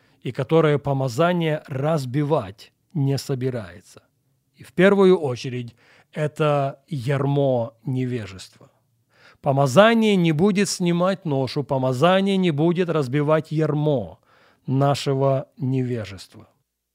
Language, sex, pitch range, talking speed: Russian, male, 135-175 Hz, 90 wpm